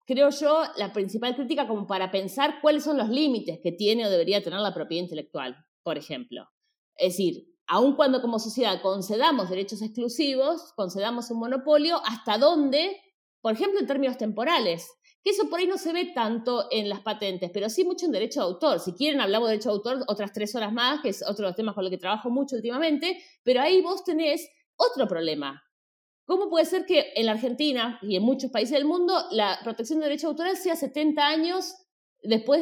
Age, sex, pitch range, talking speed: 20-39, female, 210-315 Hz, 200 wpm